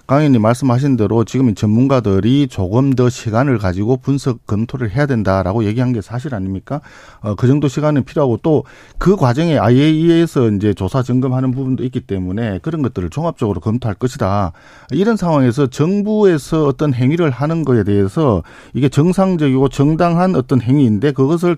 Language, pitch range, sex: Korean, 115-150 Hz, male